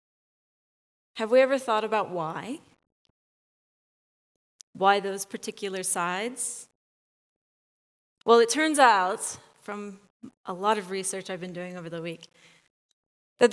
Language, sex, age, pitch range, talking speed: English, female, 30-49, 185-245 Hz, 115 wpm